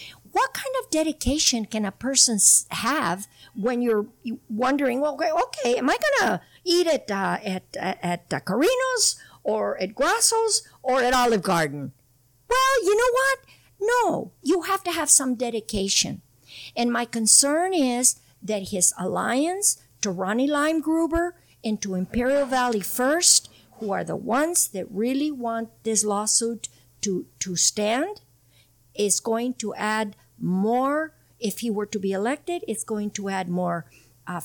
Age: 50-69